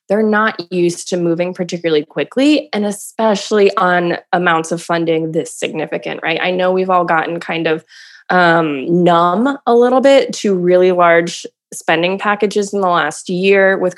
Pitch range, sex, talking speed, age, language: 170-210 Hz, female, 165 wpm, 20-39, English